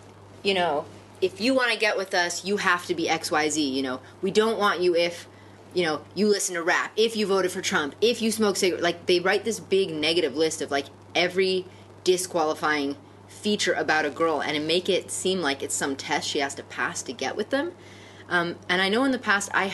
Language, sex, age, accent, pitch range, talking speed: English, female, 20-39, American, 145-200 Hz, 230 wpm